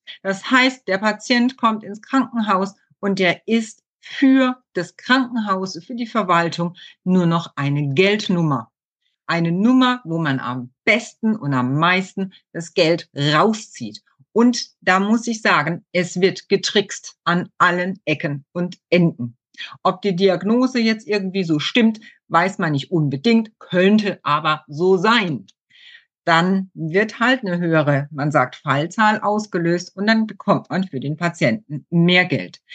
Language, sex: German, female